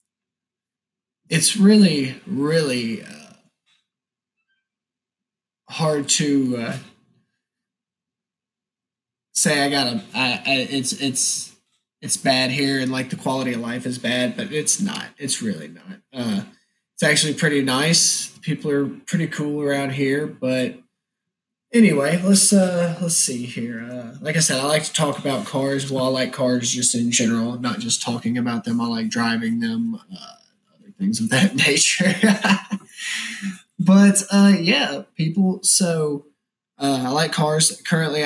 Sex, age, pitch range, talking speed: male, 20-39, 135-195 Hz, 145 wpm